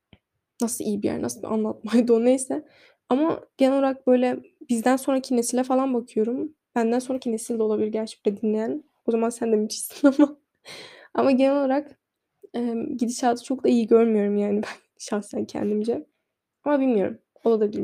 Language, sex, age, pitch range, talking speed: Turkish, female, 10-29, 225-265 Hz, 165 wpm